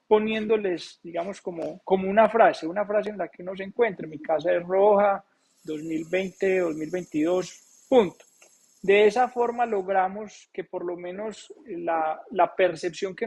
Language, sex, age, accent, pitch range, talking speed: Spanish, male, 20-39, Colombian, 165-200 Hz, 150 wpm